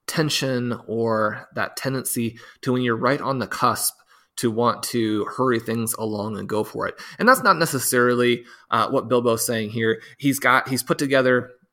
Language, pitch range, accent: English, 115-130 Hz, American